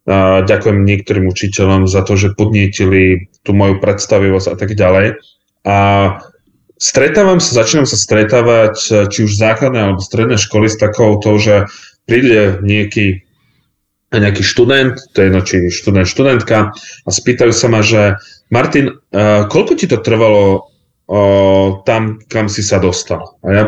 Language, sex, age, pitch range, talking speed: Slovak, male, 20-39, 100-125 Hz, 140 wpm